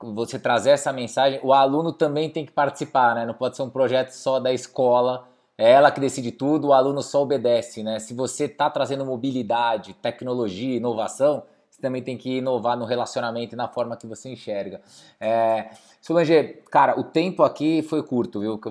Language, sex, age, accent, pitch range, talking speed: Portuguese, male, 20-39, Brazilian, 115-145 Hz, 190 wpm